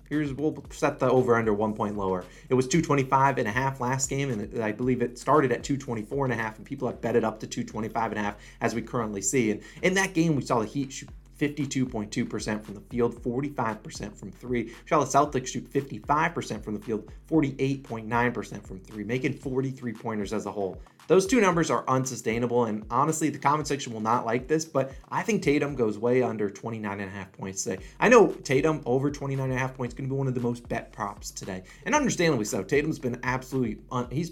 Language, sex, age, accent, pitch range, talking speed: English, male, 30-49, American, 115-150 Hz, 220 wpm